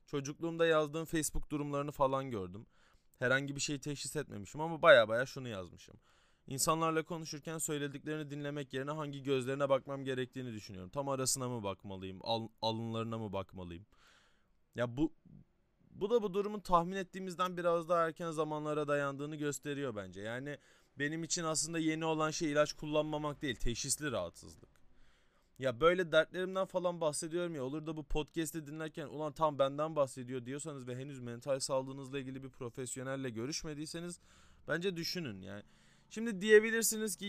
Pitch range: 125-160 Hz